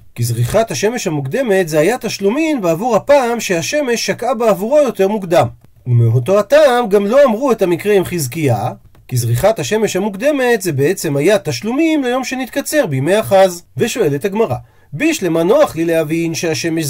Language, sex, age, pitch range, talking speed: Hebrew, male, 40-59, 130-215 Hz, 150 wpm